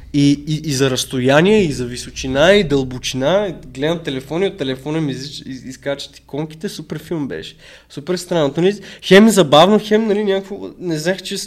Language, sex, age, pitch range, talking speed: Bulgarian, male, 20-39, 150-205 Hz, 180 wpm